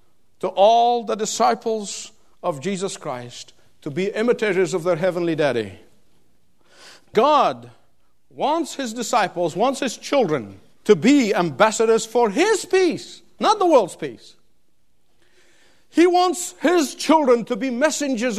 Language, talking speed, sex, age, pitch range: English, 125 wpm, male, 50-69, 220-305 Hz